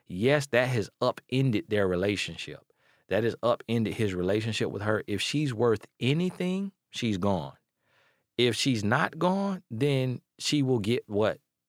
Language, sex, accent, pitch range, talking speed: English, male, American, 90-110 Hz, 145 wpm